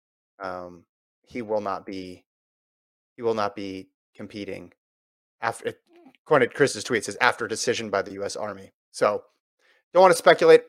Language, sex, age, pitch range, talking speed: English, male, 30-49, 110-155 Hz, 150 wpm